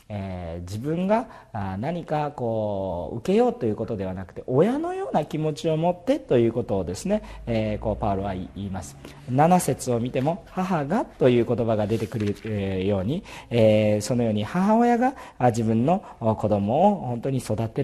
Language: Japanese